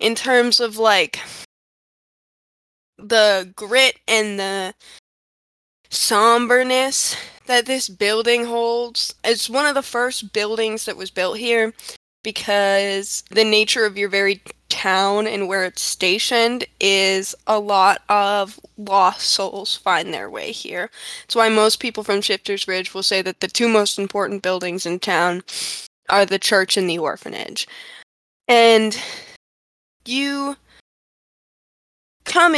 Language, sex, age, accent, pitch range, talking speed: English, female, 10-29, American, 200-245 Hz, 130 wpm